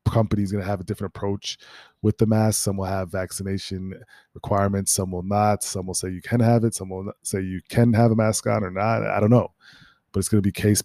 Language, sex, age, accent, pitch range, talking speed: English, male, 20-39, American, 95-110 Hz, 255 wpm